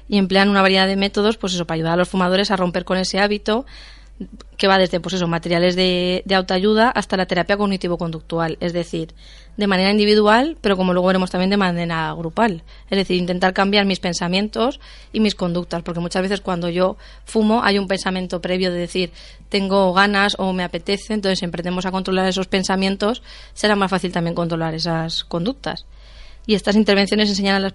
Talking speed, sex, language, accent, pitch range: 195 wpm, female, Spanish, Spanish, 180-200 Hz